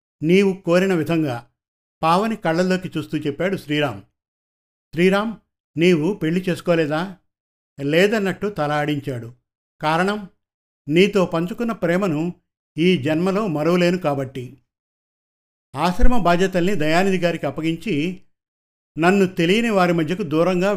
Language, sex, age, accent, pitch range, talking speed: Telugu, male, 50-69, native, 145-185 Hz, 90 wpm